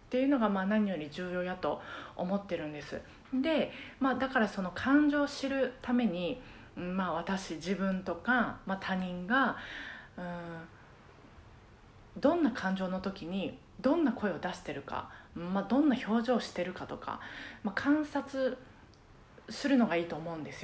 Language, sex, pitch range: Japanese, female, 175-265 Hz